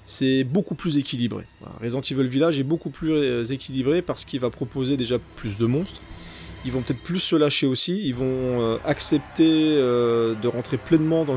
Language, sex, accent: French, male, French